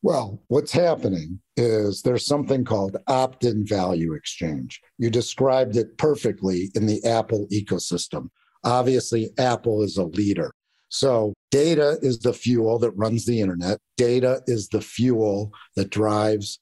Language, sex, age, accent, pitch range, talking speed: English, male, 50-69, American, 105-130 Hz, 135 wpm